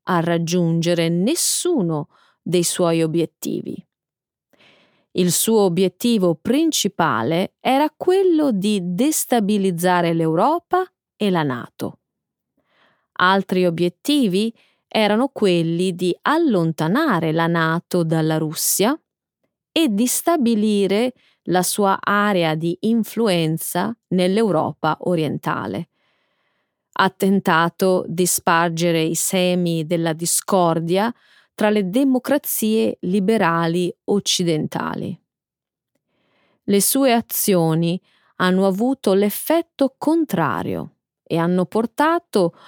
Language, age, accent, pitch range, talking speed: Italian, 30-49, native, 170-230 Hz, 85 wpm